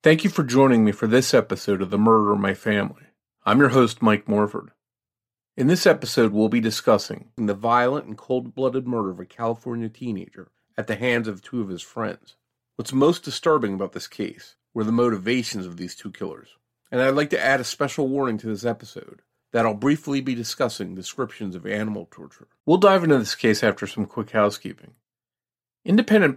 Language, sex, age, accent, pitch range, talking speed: English, male, 40-59, American, 105-130 Hz, 195 wpm